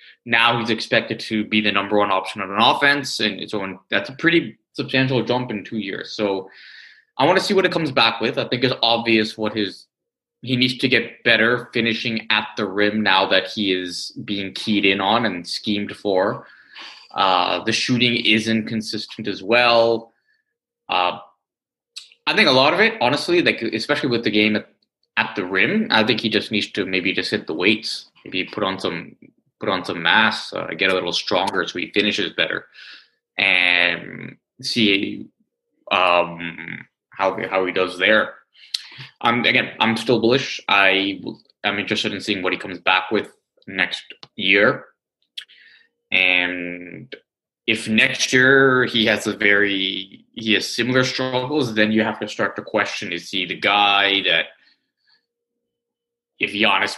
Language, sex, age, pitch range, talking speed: English, male, 20-39, 100-125 Hz, 175 wpm